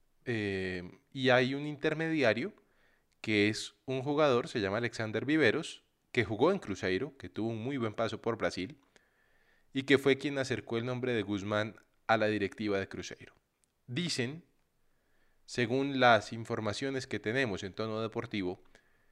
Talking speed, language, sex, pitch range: 150 wpm, Spanish, male, 105-135 Hz